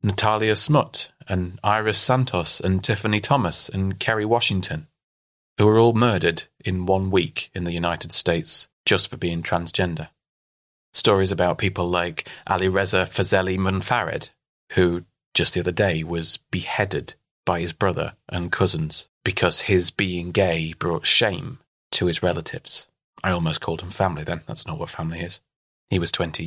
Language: English